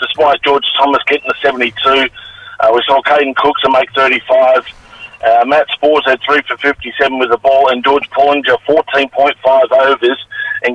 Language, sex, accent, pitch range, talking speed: English, male, Australian, 130-160 Hz, 160 wpm